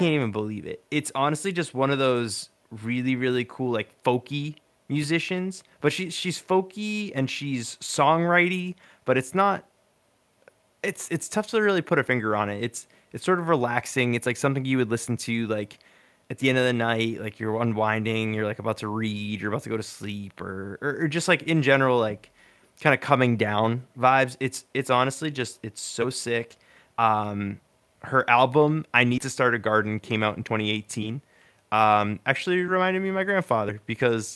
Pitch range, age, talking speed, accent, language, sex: 110-145 Hz, 20-39, 190 wpm, American, English, male